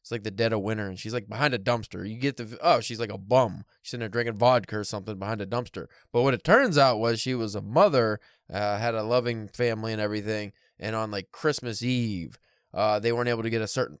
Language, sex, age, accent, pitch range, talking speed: English, male, 20-39, American, 110-125 Hz, 255 wpm